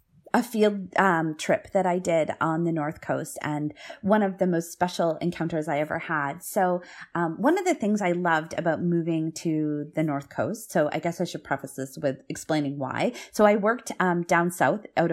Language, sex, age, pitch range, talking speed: English, female, 30-49, 150-185 Hz, 205 wpm